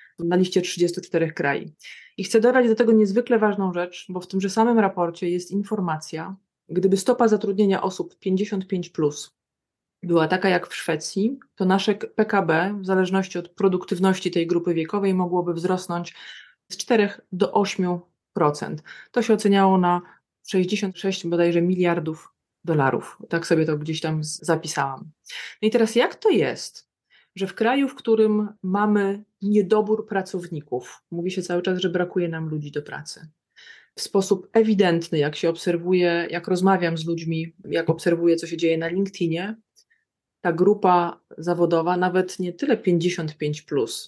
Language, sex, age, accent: Polish, female, 20-39, native